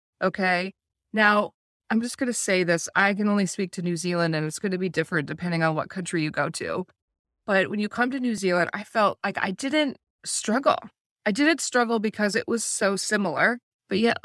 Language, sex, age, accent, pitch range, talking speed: English, female, 20-39, American, 165-210 Hz, 215 wpm